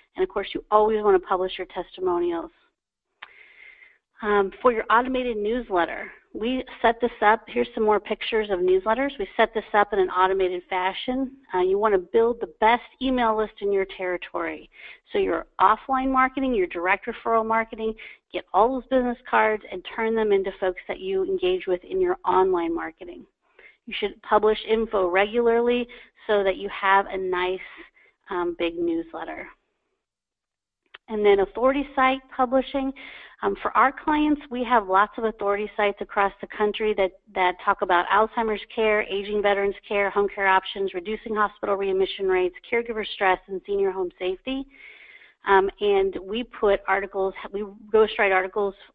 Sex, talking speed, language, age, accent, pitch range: female, 165 wpm, English, 40-59, American, 190-245 Hz